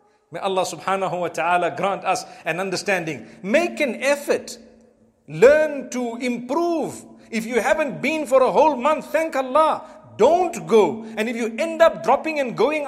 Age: 50-69